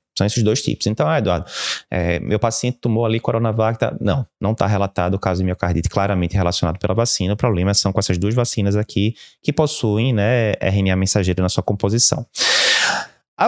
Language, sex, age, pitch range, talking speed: Portuguese, male, 20-39, 95-130 Hz, 180 wpm